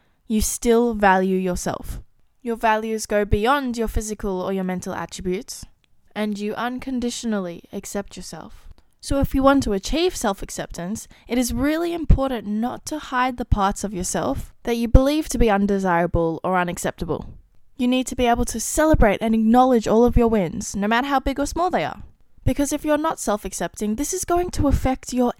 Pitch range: 200-290 Hz